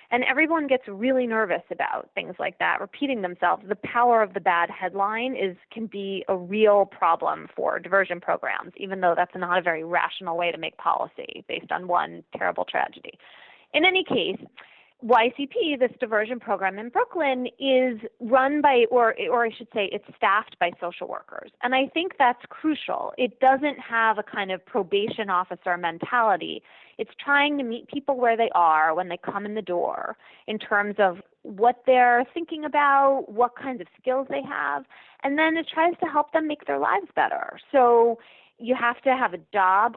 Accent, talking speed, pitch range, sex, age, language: American, 185 wpm, 195-260 Hz, female, 20-39, English